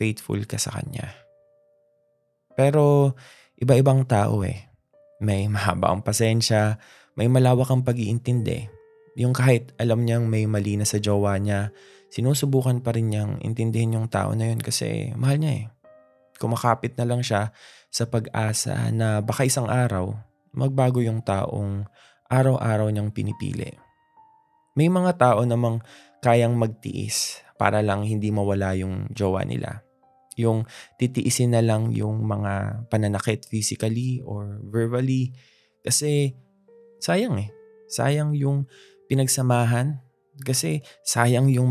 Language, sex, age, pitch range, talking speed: Filipino, male, 20-39, 110-135 Hz, 125 wpm